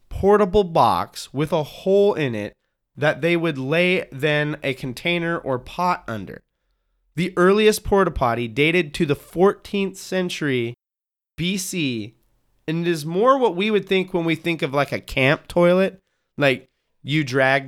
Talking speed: 155 wpm